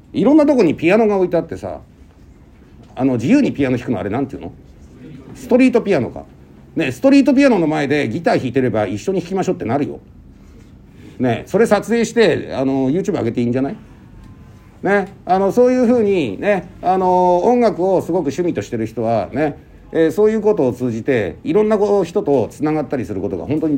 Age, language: 50-69, Japanese